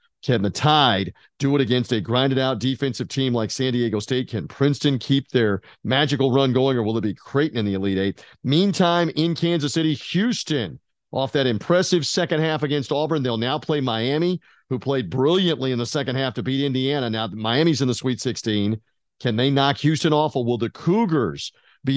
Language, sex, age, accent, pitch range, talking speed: English, male, 50-69, American, 115-150 Hz, 195 wpm